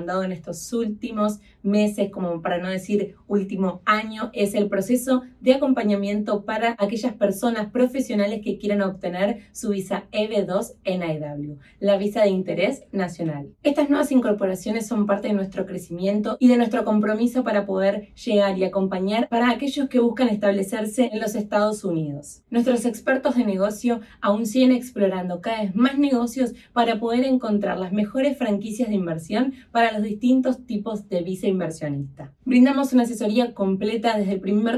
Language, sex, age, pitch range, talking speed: Spanish, female, 20-39, 195-235 Hz, 160 wpm